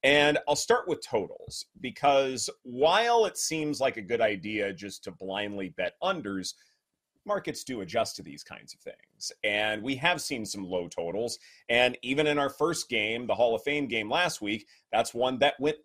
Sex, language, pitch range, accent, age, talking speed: male, English, 110-155 Hz, American, 30-49, 190 wpm